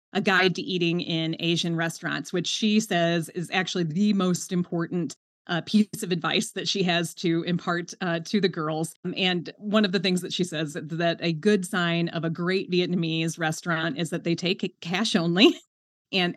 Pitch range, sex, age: 170-205 Hz, female, 30-49